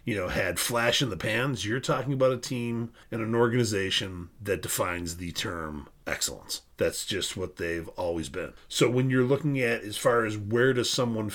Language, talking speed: English, 195 wpm